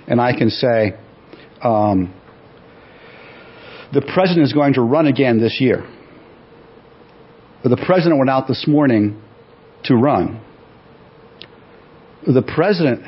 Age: 50-69